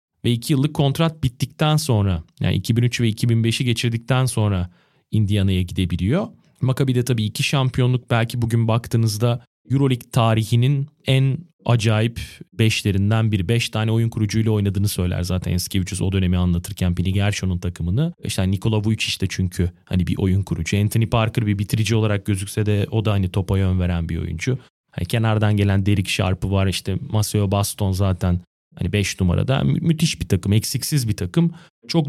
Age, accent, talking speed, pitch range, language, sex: 30-49, native, 165 wpm, 95-125 Hz, Turkish, male